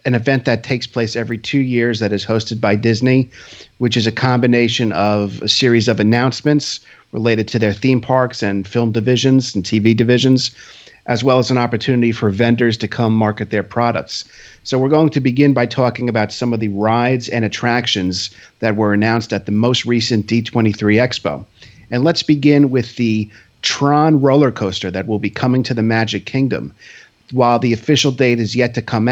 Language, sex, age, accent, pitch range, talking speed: English, male, 50-69, American, 110-130 Hz, 190 wpm